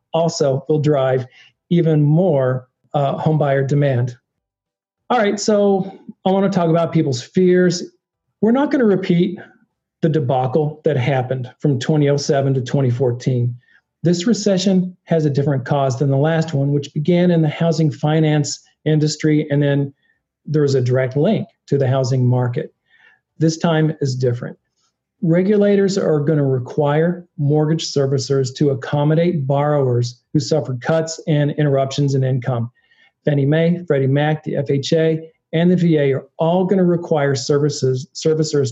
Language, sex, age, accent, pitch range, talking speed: English, male, 40-59, American, 135-165 Hz, 150 wpm